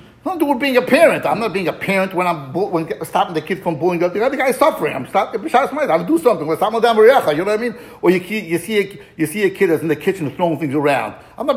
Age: 50-69